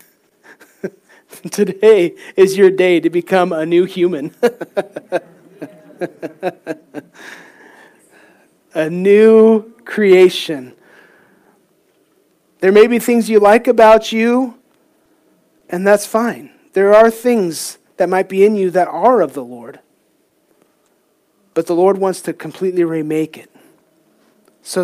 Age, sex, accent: 40-59, male, American